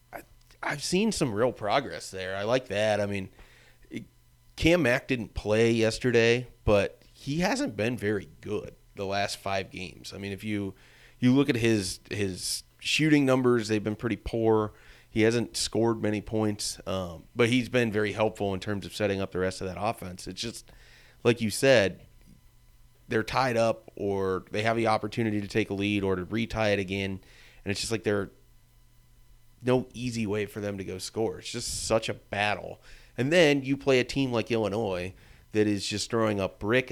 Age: 30-49